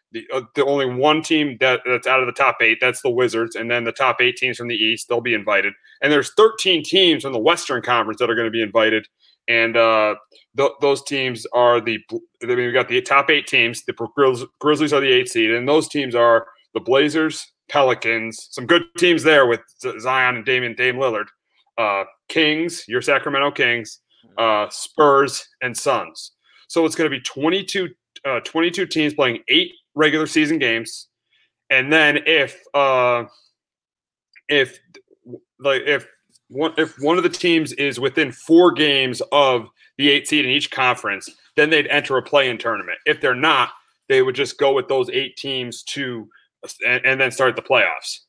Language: English